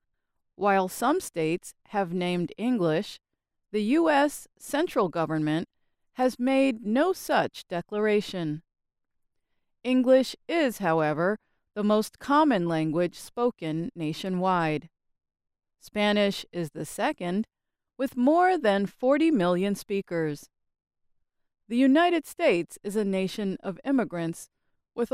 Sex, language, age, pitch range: female, English, 30-49, 170-270 Hz